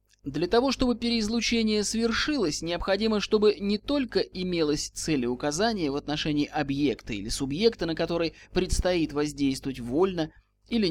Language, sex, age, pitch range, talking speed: Russian, male, 20-39, 145-210 Hz, 120 wpm